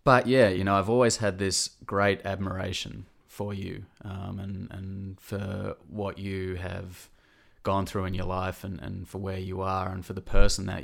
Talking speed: 195 wpm